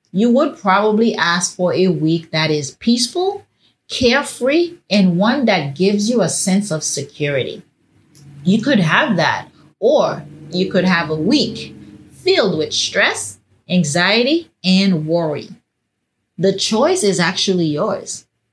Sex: female